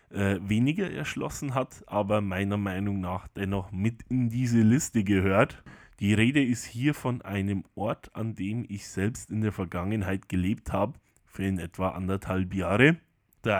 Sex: male